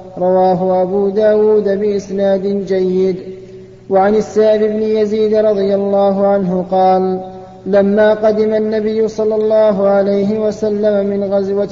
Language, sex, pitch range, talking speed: Arabic, male, 190-215 Hz, 115 wpm